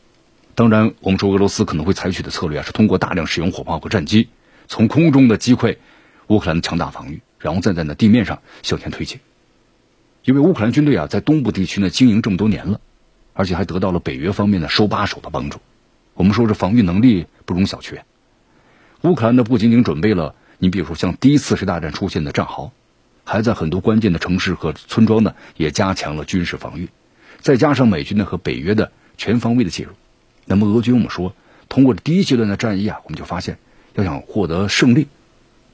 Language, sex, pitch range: Chinese, male, 90-120 Hz